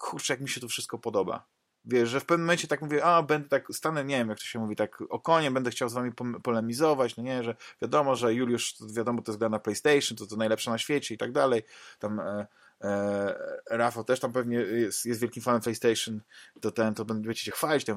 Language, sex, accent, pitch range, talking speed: Polish, male, native, 110-140 Hz, 240 wpm